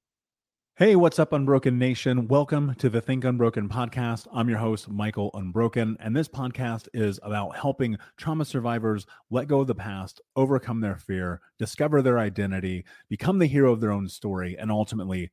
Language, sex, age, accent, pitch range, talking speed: English, male, 30-49, American, 105-130 Hz, 170 wpm